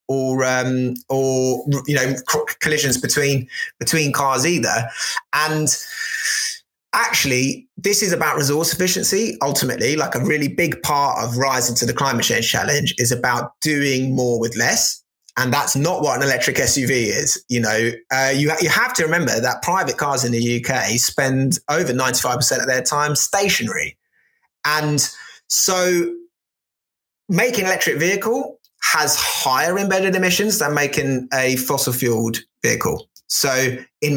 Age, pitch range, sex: 20-39, 130-170 Hz, male